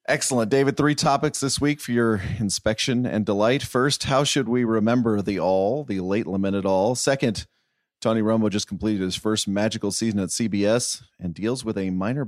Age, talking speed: 40-59, 185 wpm